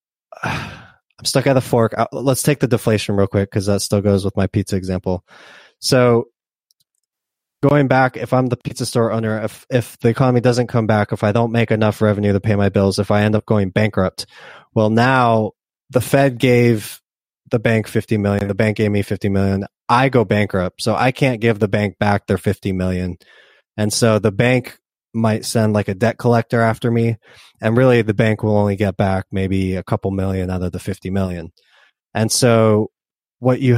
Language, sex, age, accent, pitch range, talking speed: English, male, 20-39, American, 105-125 Hz, 200 wpm